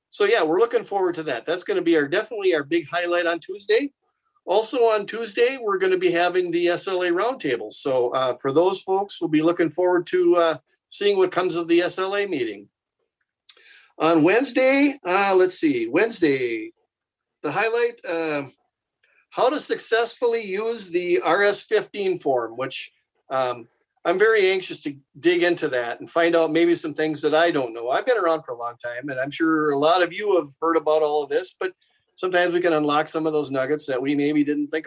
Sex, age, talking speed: male, 50-69, 205 wpm